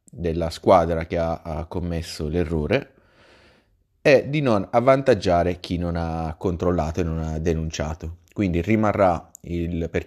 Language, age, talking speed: Italian, 30-49, 130 wpm